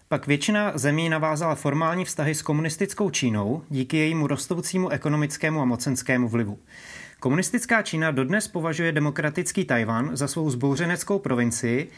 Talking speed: 130 wpm